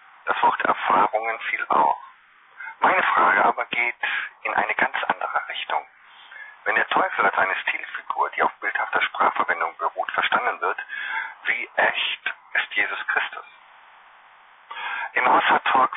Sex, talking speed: female, 130 wpm